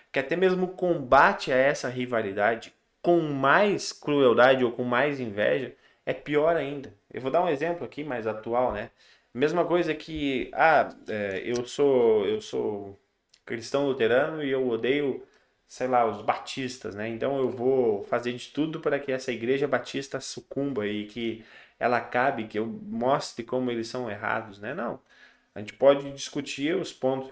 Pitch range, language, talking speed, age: 115-150 Hz, Portuguese, 165 wpm, 20-39